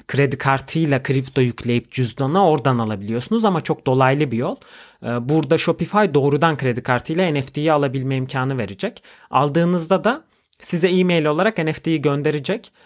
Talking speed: 130 wpm